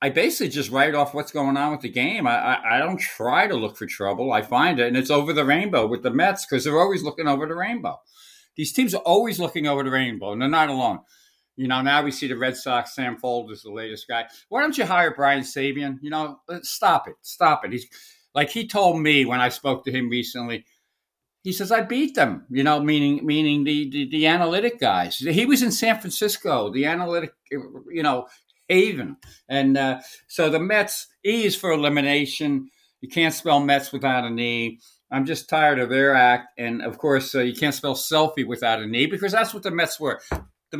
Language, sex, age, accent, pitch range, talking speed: English, male, 60-79, American, 130-170 Hz, 220 wpm